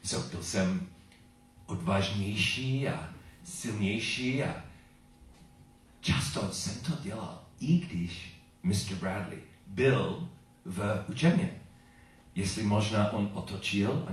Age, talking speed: 40-59, 100 wpm